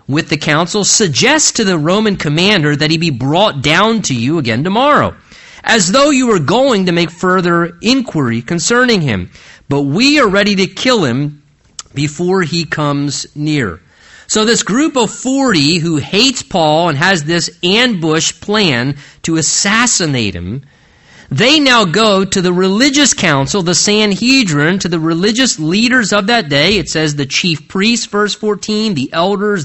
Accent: American